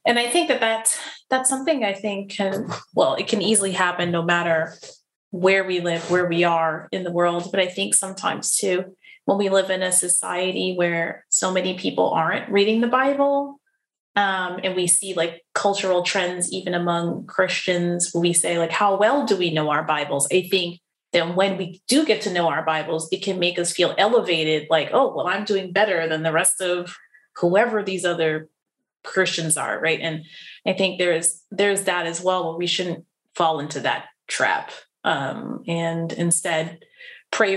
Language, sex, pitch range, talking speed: English, female, 165-195 Hz, 190 wpm